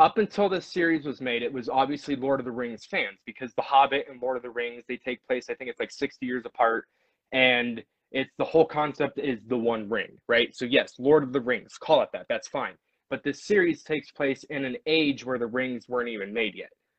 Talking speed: 240 wpm